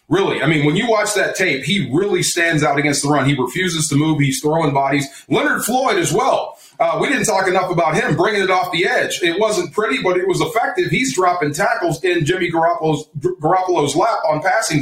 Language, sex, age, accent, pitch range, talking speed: English, male, 30-49, American, 150-200 Hz, 225 wpm